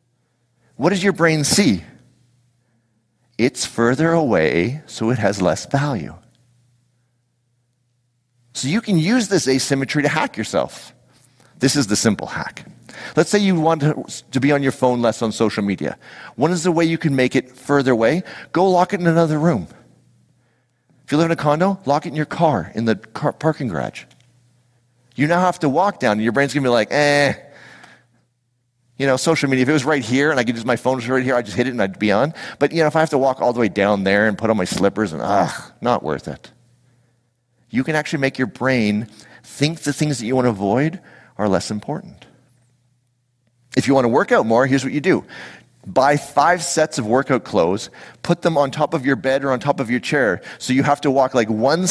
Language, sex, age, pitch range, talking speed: English, male, 40-59, 120-145 Hz, 220 wpm